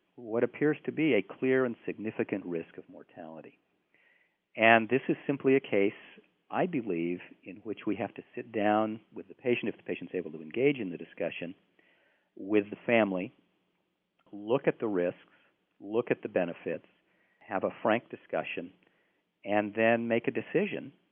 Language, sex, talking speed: English, male, 165 wpm